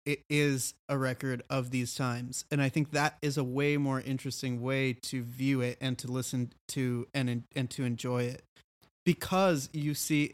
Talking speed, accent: 185 wpm, American